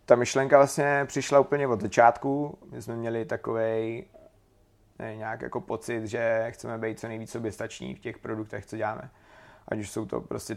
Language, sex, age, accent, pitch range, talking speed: Czech, male, 30-49, native, 110-115 Hz, 175 wpm